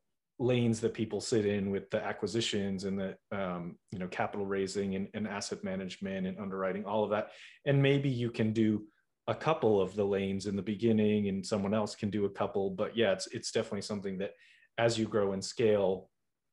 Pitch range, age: 95-115 Hz, 30-49